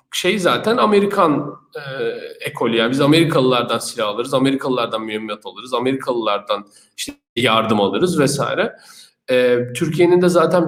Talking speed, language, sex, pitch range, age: 125 wpm, Turkish, male, 125-165 Hz, 40-59